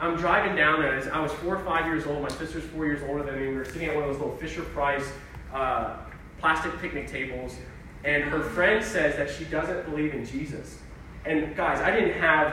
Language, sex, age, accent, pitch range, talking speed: English, male, 20-39, American, 150-220 Hz, 220 wpm